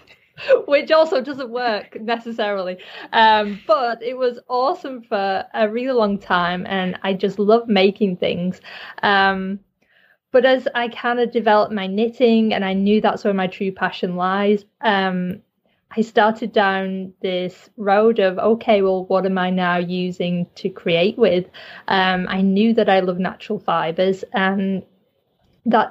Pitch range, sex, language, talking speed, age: 190-225 Hz, female, English, 155 wpm, 20-39